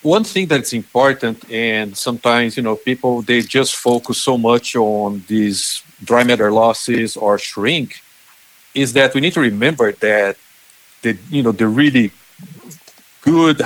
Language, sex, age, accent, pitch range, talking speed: English, male, 50-69, Brazilian, 105-120 Hz, 150 wpm